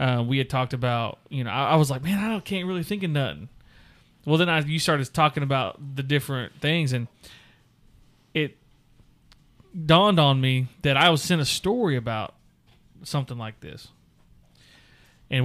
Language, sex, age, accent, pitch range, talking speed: English, male, 30-49, American, 125-150 Hz, 175 wpm